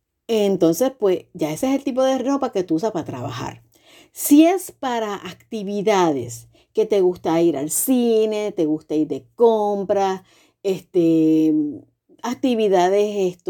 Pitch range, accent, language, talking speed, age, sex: 160-220 Hz, American, Spanish, 135 wpm, 50-69, female